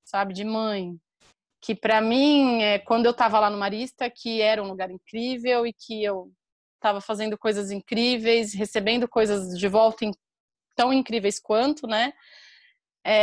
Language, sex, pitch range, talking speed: Portuguese, female, 220-270 Hz, 160 wpm